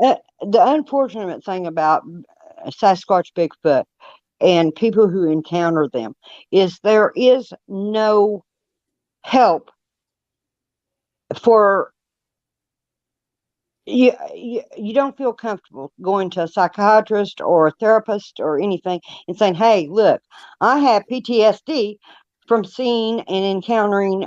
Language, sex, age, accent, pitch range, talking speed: English, female, 60-79, American, 190-240 Hz, 110 wpm